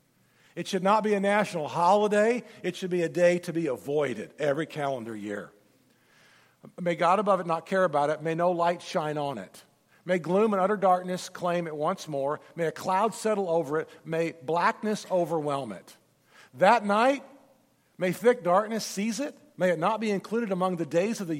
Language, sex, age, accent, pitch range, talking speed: English, male, 50-69, American, 165-220 Hz, 190 wpm